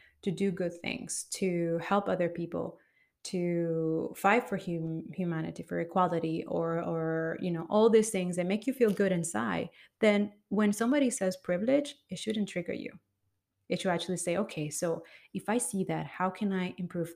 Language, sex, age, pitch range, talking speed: English, female, 30-49, 175-215 Hz, 180 wpm